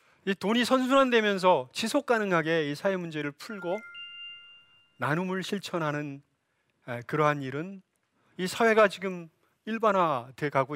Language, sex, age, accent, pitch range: Korean, male, 40-59, native, 145-205 Hz